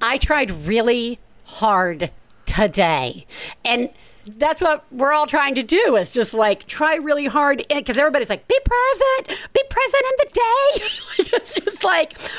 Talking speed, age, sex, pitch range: 155 wpm, 50-69, female, 255-315 Hz